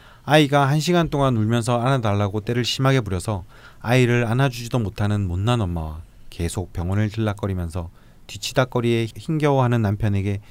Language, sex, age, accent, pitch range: Korean, male, 30-49, native, 95-125 Hz